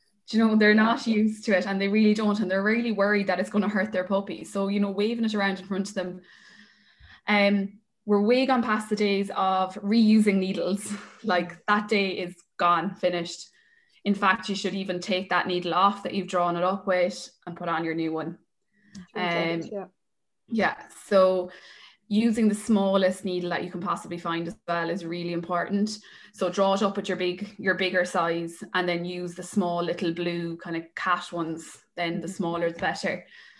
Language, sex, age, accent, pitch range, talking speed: English, female, 20-39, Irish, 180-210 Hz, 205 wpm